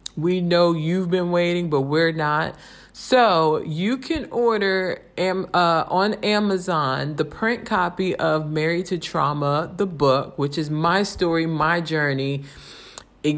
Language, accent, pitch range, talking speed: English, American, 155-185 Hz, 145 wpm